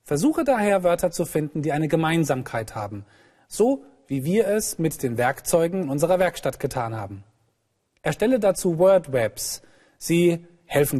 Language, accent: German, German